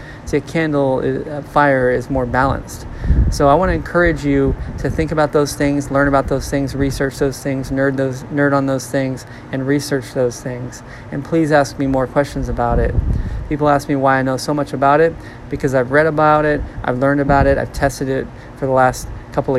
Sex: male